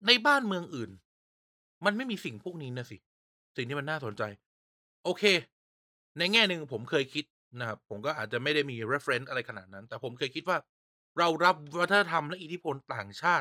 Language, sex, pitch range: Thai, male, 125-175 Hz